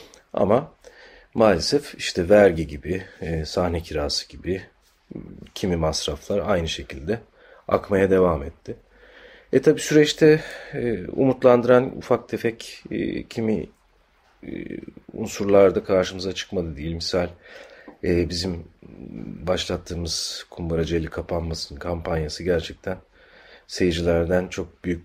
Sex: male